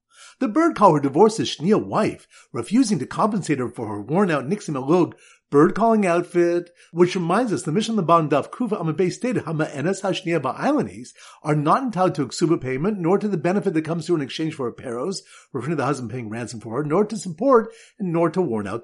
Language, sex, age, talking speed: English, male, 50-69, 200 wpm